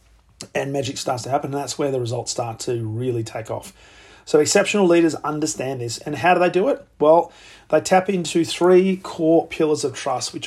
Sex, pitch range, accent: male, 130-160 Hz, Australian